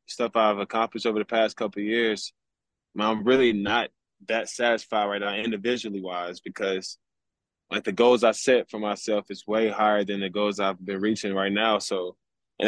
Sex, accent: male, American